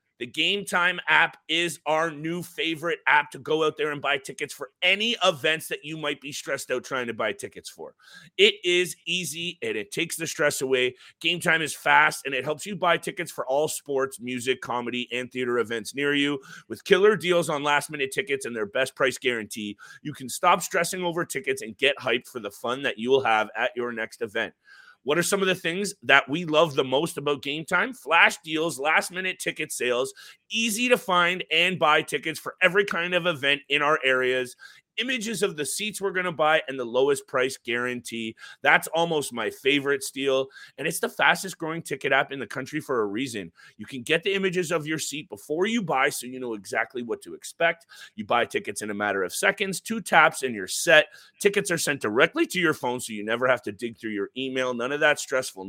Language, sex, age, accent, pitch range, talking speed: English, male, 30-49, American, 130-180 Hz, 220 wpm